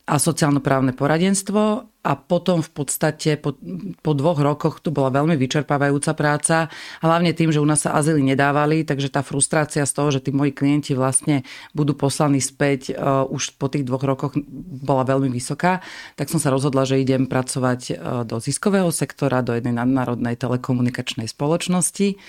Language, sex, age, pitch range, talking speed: Slovak, female, 40-59, 130-155 Hz, 160 wpm